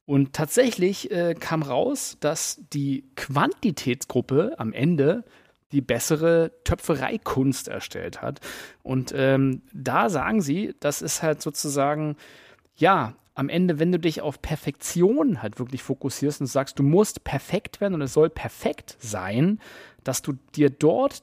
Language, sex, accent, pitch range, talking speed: German, male, German, 135-170 Hz, 140 wpm